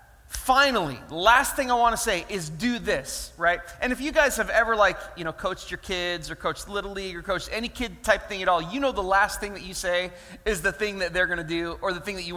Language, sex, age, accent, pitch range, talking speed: English, male, 30-49, American, 170-235 Hz, 270 wpm